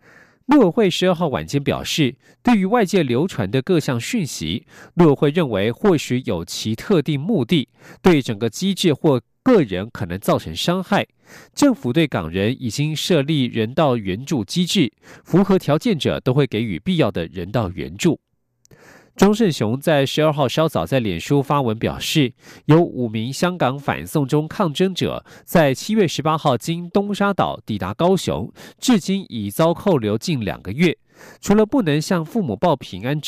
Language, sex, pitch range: German, male, 120-175 Hz